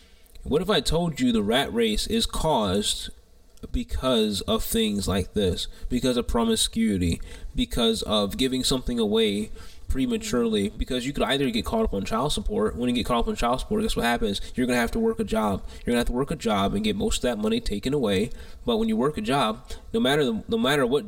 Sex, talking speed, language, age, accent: male, 230 wpm, English, 20-39, American